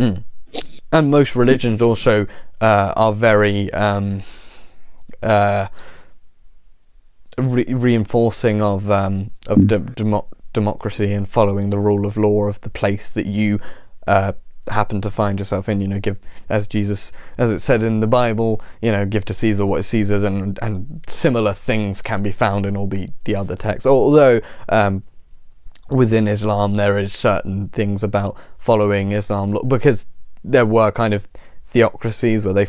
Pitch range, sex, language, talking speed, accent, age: 100-115 Hz, male, English, 160 wpm, British, 20-39